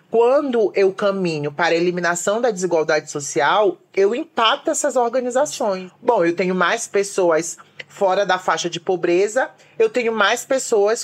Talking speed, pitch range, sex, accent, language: 145 wpm, 160-200 Hz, male, Brazilian, Portuguese